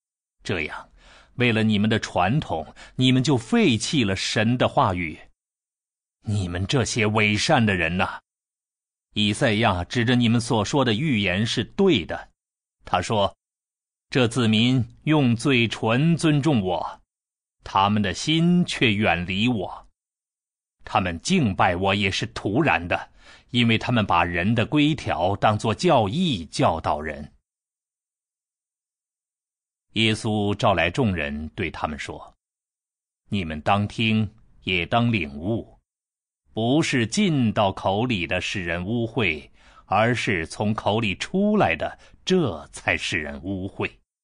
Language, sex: Chinese, male